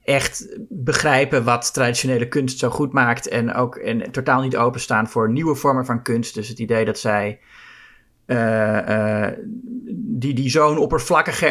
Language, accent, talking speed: Dutch, Dutch, 150 wpm